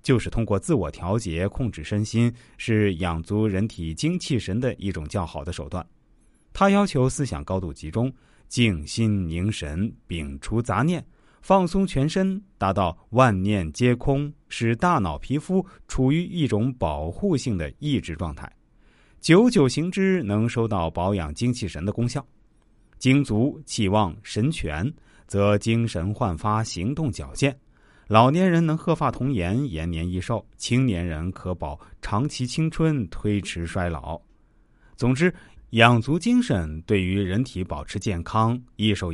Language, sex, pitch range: Chinese, male, 95-140 Hz